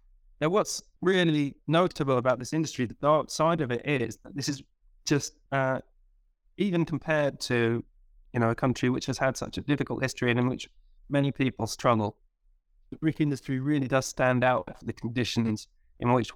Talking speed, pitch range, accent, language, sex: 185 wpm, 115-140 Hz, British, English, male